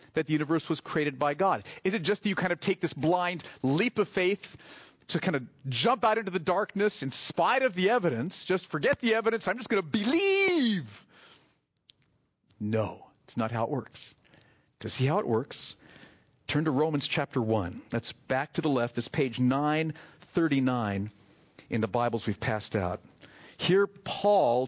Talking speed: 180 wpm